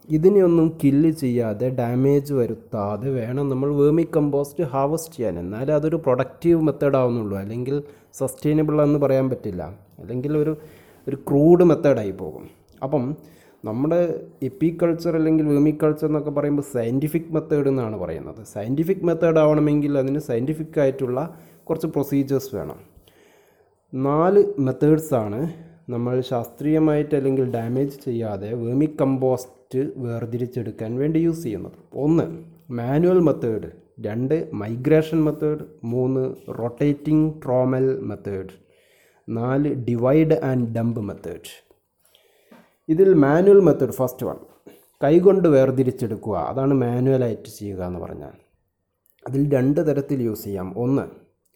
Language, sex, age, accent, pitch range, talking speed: English, male, 30-49, Indian, 120-155 Hz, 55 wpm